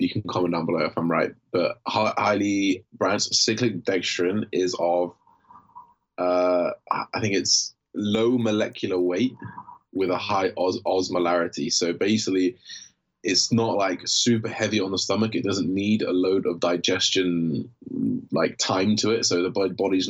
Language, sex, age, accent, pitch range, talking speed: English, male, 20-39, British, 90-110 Hz, 150 wpm